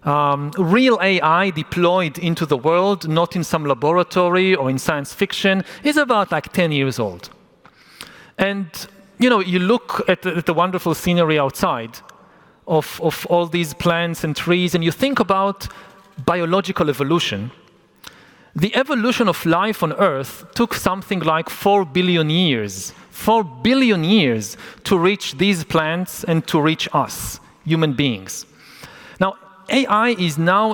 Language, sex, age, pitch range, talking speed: English, male, 40-59, 155-195 Hz, 145 wpm